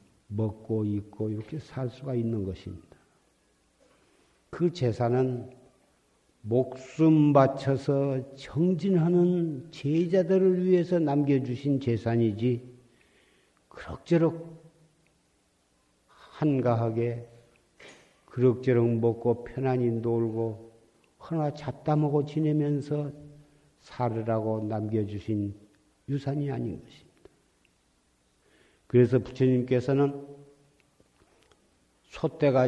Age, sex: 50-69, male